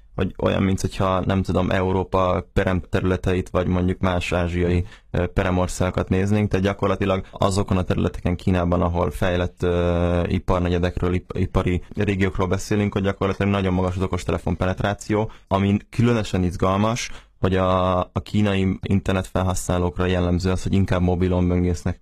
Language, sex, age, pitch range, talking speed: Hungarian, male, 20-39, 90-100 Hz, 130 wpm